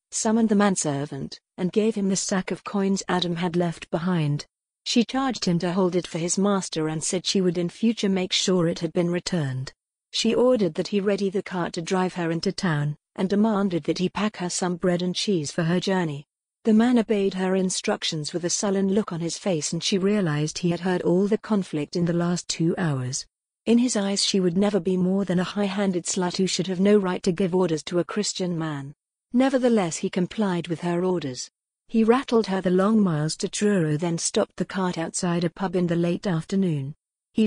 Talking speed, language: 220 wpm, English